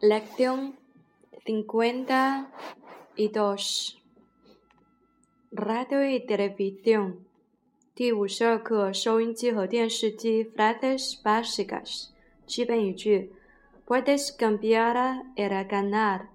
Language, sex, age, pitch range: Chinese, female, 20-39, 205-245 Hz